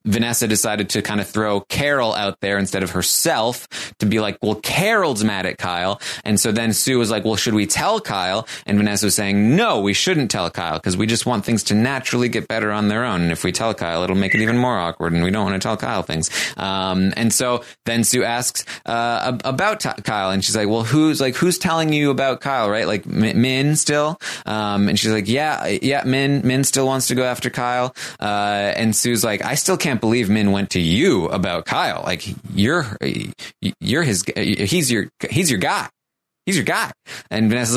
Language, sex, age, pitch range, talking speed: English, male, 20-39, 100-130 Hz, 220 wpm